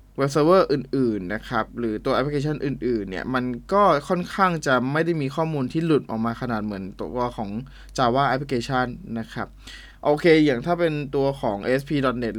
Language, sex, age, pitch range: Thai, male, 20-39, 120-155 Hz